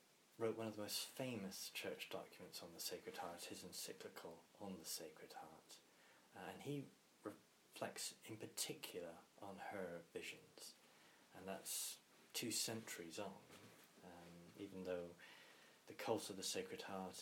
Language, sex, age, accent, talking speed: English, male, 30-49, British, 145 wpm